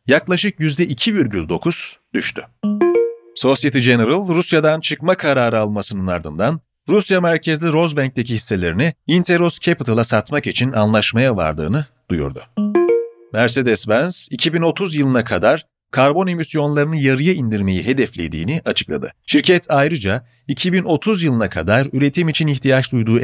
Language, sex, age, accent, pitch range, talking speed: Turkish, male, 40-59, native, 110-160 Hz, 105 wpm